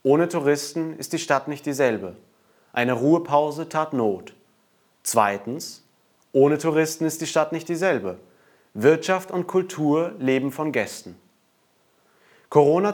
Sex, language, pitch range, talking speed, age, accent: male, German, 135-170 Hz, 120 wpm, 30-49, German